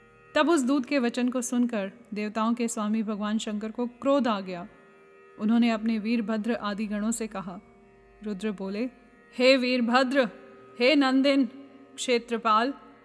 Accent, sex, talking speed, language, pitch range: native, female, 145 wpm, Hindi, 220-255 Hz